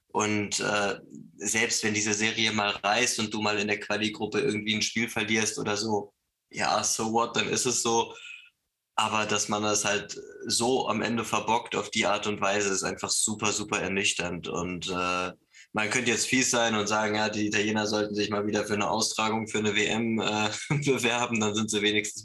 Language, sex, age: German, male, 20-39